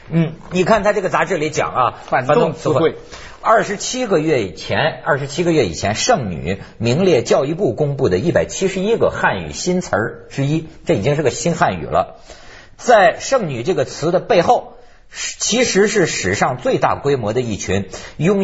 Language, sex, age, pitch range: Chinese, male, 50-69, 120-185 Hz